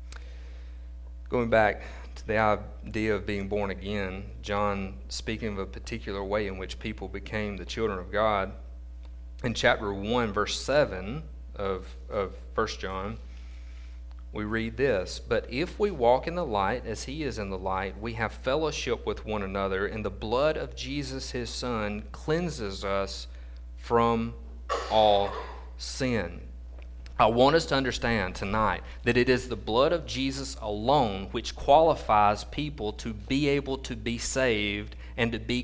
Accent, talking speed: American, 155 wpm